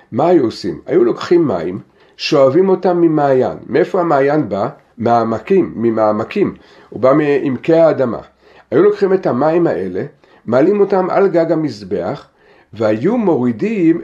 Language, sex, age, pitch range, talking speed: Hebrew, male, 50-69, 130-185 Hz, 130 wpm